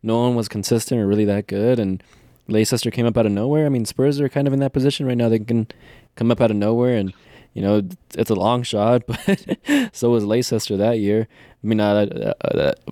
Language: English